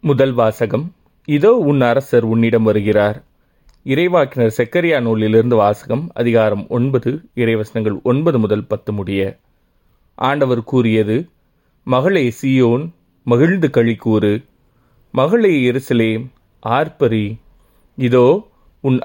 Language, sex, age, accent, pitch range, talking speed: Tamil, male, 30-49, native, 115-140 Hz, 90 wpm